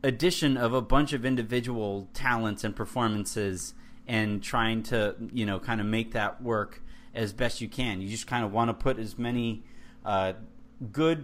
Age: 30-49